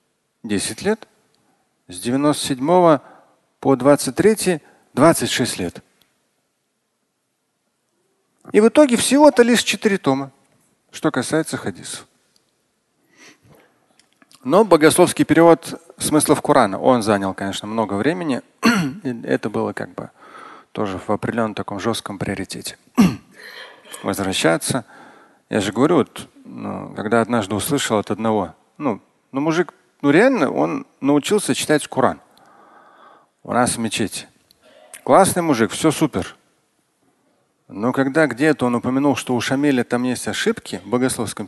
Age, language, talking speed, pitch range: 40-59, Russian, 115 wpm, 120-165 Hz